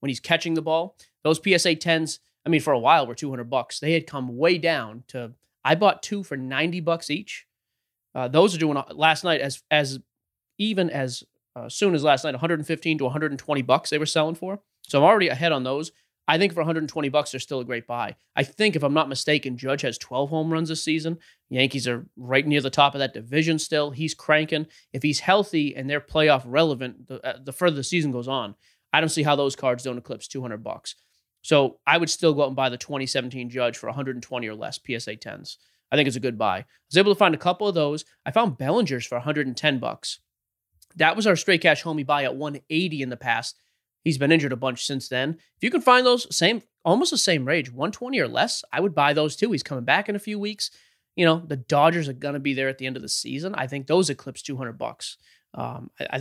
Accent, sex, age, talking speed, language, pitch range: American, male, 30-49, 240 wpm, English, 130-165 Hz